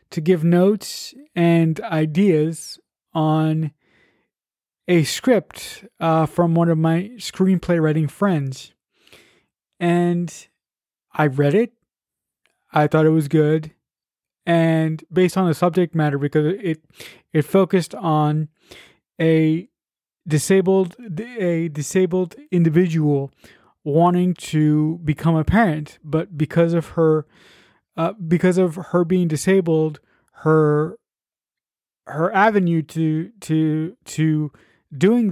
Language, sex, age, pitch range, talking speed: English, male, 20-39, 155-180 Hz, 105 wpm